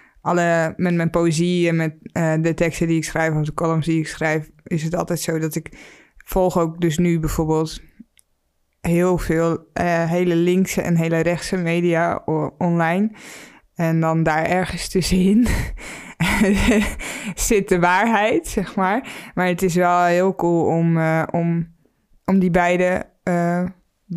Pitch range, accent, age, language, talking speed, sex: 165-185 Hz, Dutch, 20-39, Dutch, 155 wpm, female